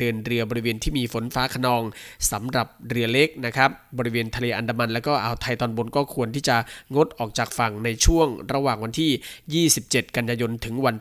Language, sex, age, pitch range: Thai, male, 20-39, 115-130 Hz